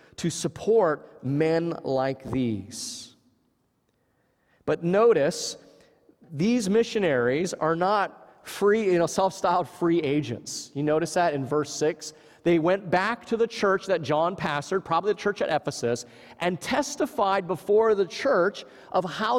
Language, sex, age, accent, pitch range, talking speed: English, male, 40-59, American, 155-200 Hz, 135 wpm